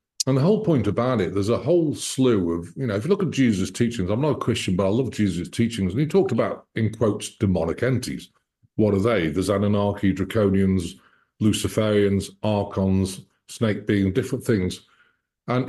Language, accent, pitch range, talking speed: English, British, 95-130 Hz, 185 wpm